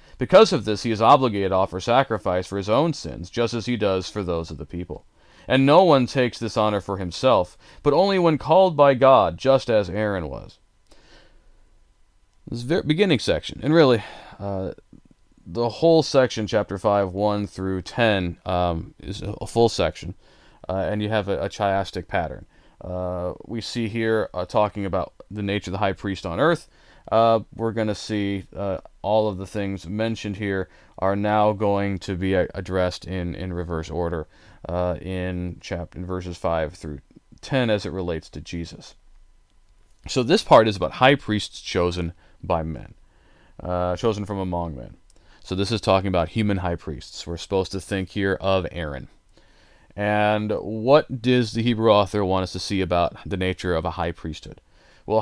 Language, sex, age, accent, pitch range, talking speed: English, male, 30-49, American, 90-110 Hz, 180 wpm